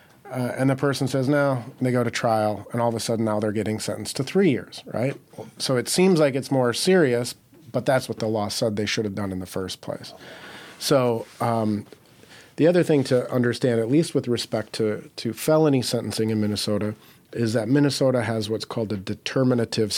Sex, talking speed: male, 205 wpm